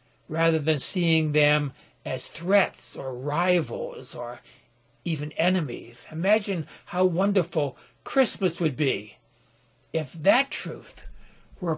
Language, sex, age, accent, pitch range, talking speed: English, male, 60-79, American, 145-175 Hz, 105 wpm